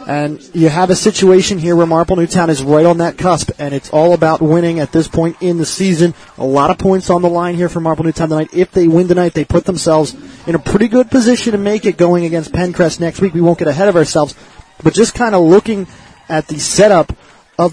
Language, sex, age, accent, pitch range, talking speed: English, male, 30-49, American, 155-180 Hz, 245 wpm